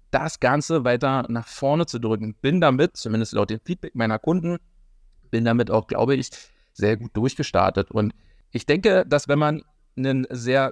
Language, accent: German, German